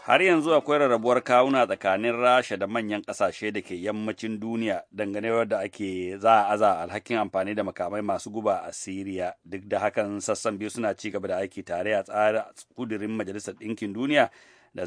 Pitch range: 105-120 Hz